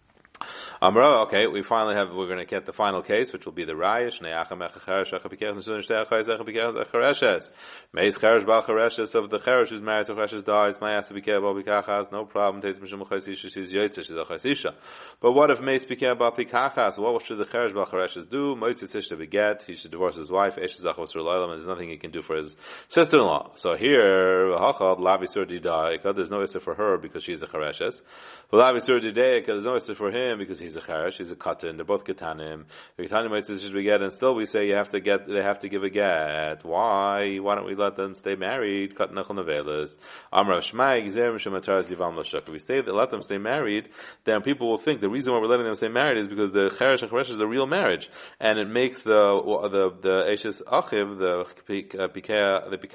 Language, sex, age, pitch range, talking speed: English, male, 30-49, 95-120 Hz, 220 wpm